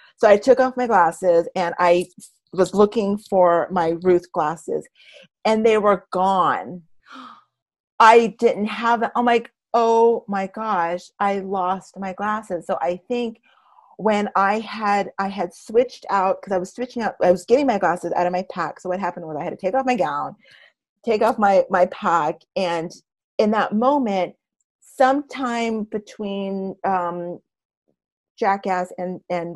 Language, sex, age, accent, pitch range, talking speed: English, female, 30-49, American, 175-225 Hz, 160 wpm